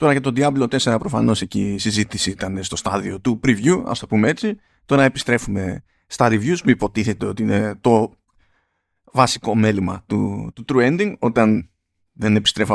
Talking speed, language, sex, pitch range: 170 wpm, Greek, male, 105-155 Hz